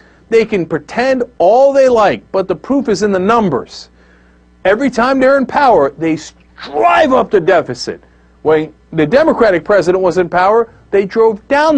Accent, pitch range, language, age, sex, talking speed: American, 155-260 Hz, English, 40-59, male, 170 wpm